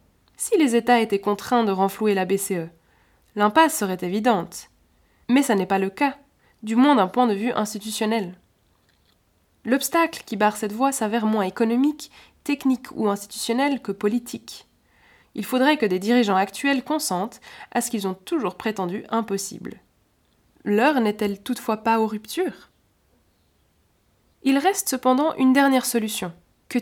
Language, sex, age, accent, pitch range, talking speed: French, female, 20-39, French, 200-265 Hz, 145 wpm